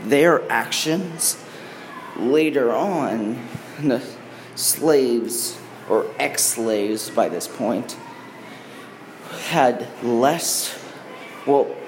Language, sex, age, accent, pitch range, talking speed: English, male, 20-39, American, 115-180 Hz, 70 wpm